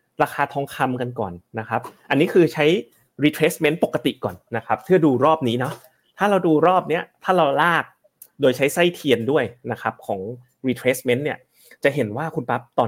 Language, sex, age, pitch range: Thai, male, 30-49, 110-150 Hz